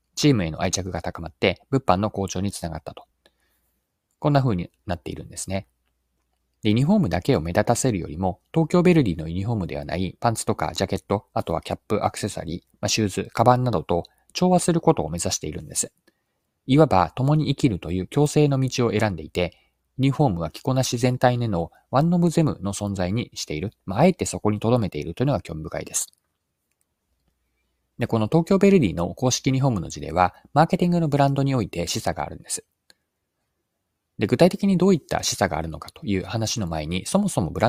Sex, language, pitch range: male, Japanese, 85-135 Hz